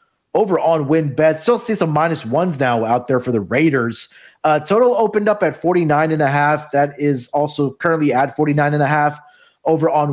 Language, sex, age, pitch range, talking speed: English, male, 30-49, 125-160 Hz, 205 wpm